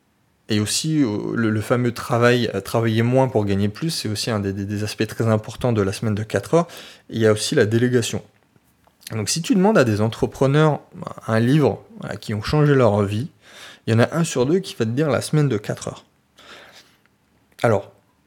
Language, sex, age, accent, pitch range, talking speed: French, male, 20-39, French, 110-140 Hz, 195 wpm